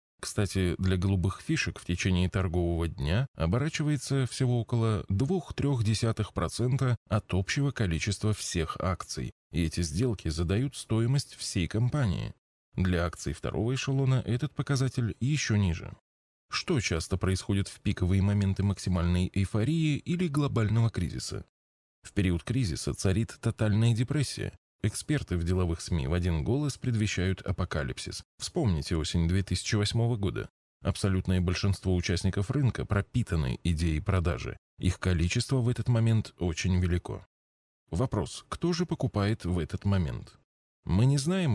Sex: male